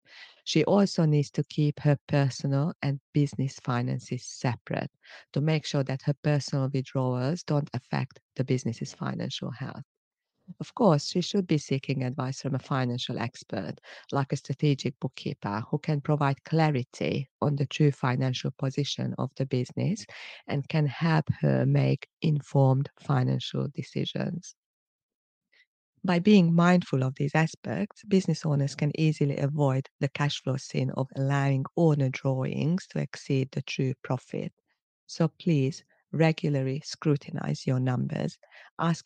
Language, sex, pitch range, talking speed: English, female, 130-165 Hz, 140 wpm